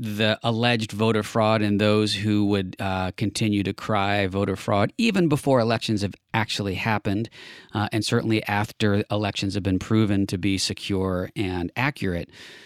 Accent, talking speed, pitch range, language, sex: American, 155 wpm, 100-120 Hz, English, male